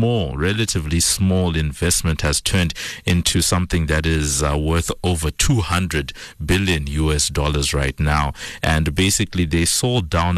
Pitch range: 80-105 Hz